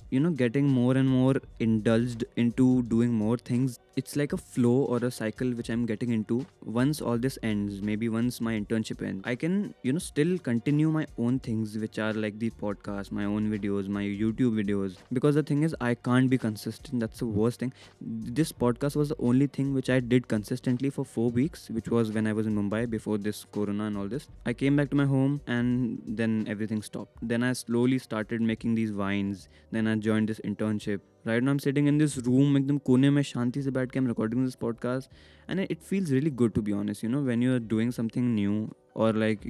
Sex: male